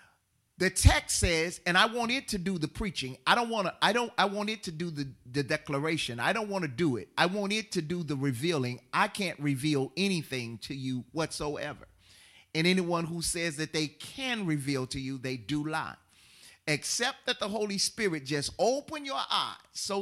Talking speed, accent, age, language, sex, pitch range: 205 wpm, American, 40-59, English, male, 150-240 Hz